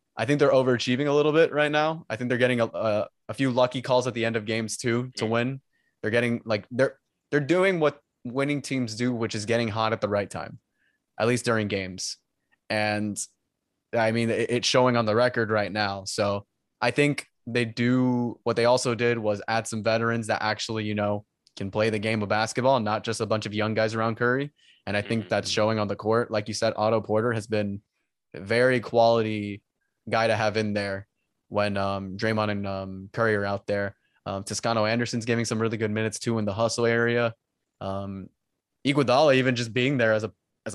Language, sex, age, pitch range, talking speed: English, male, 20-39, 105-125 Hz, 215 wpm